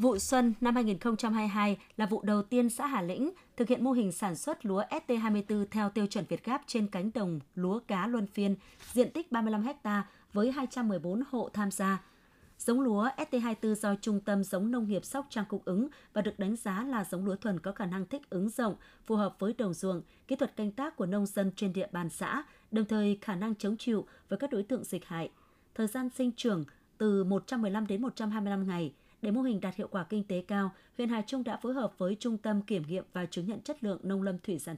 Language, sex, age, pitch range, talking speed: Vietnamese, female, 20-39, 195-240 Hz, 230 wpm